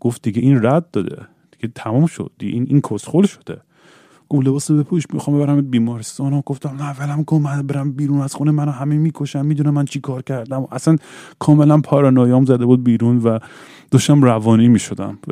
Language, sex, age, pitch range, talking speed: Persian, male, 30-49, 105-140 Hz, 190 wpm